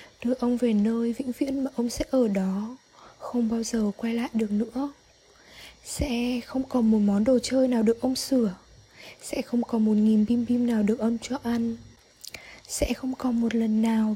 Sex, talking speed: female, 200 wpm